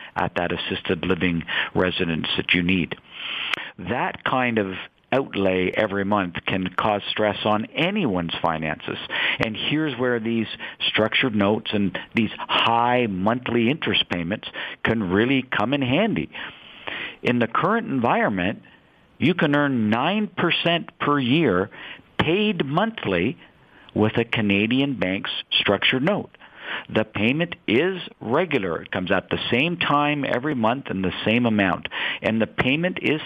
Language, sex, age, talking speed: English, male, 50-69, 135 wpm